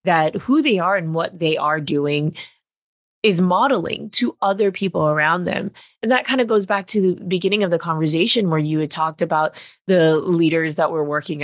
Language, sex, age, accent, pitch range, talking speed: English, female, 20-39, American, 155-200 Hz, 200 wpm